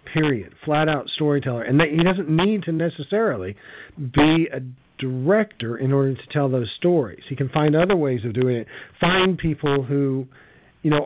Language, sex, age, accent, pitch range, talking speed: English, male, 40-59, American, 115-160 Hz, 175 wpm